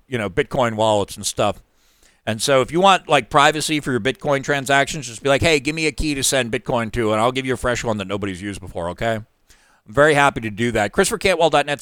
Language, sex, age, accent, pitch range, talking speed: English, male, 50-69, American, 120-165 Hz, 245 wpm